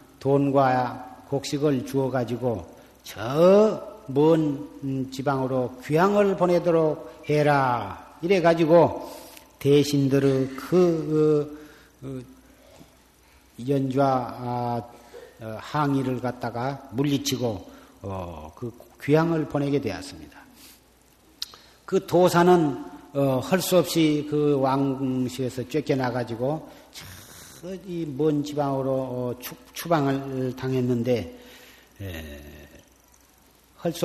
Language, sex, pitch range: Korean, male, 130-155 Hz